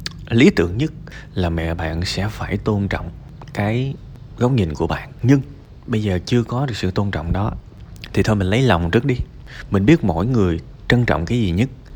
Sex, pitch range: male, 90-120 Hz